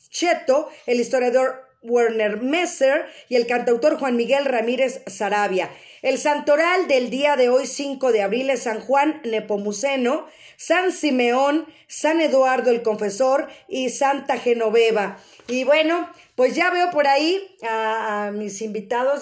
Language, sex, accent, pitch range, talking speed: Spanish, female, Mexican, 240-300 Hz, 140 wpm